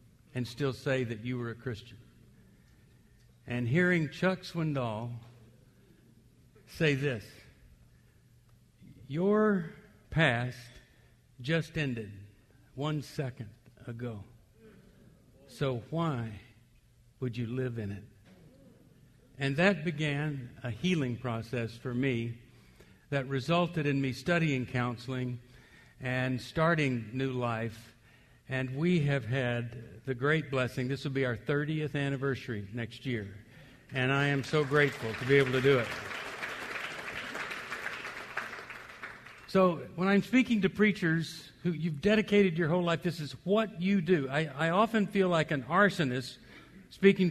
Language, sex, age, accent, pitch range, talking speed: English, male, 60-79, American, 120-165 Hz, 125 wpm